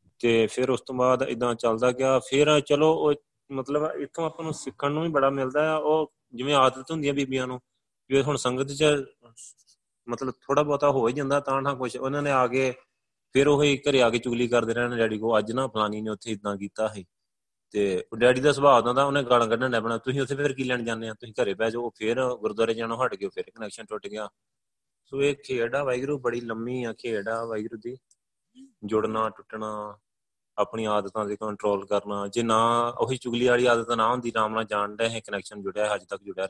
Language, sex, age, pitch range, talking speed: Punjabi, male, 20-39, 110-135 Hz, 190 wpm